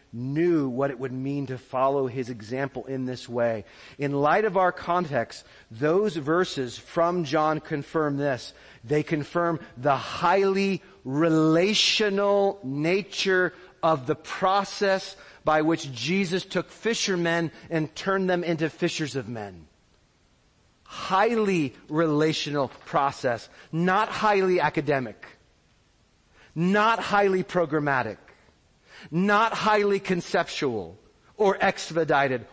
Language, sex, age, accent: English, male, 40-59, American